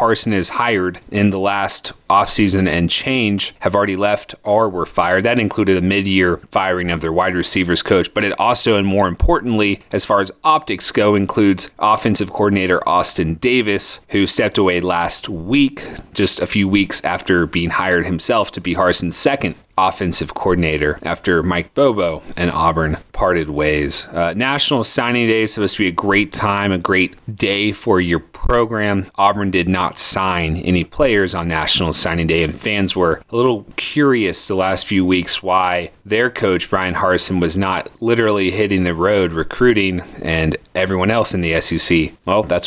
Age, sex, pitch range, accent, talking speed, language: 30-49, male, 90-105 Hz, American, 175 wpm, English